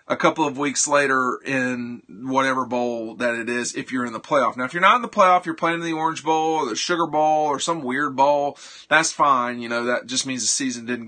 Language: English